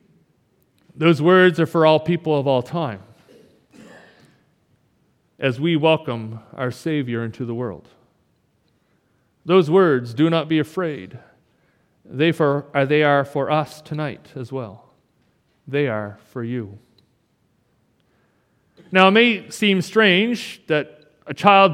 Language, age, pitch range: English, 40-59, 150-195 Hz